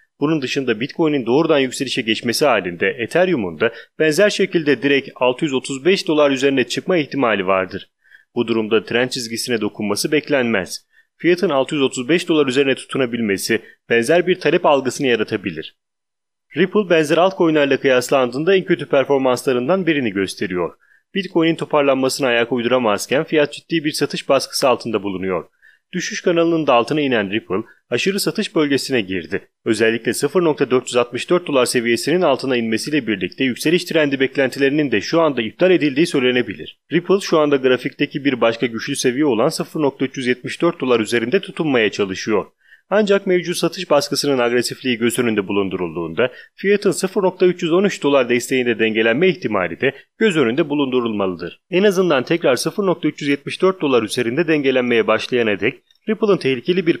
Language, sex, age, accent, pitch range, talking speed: Italian, male, 30-49, Turkish, 125-170 Hz, 130 wpm